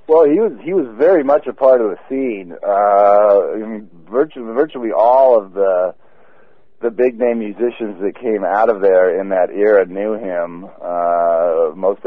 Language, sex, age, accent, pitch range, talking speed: English, male, 40-59, American, 95-125 Hz, 175 wpm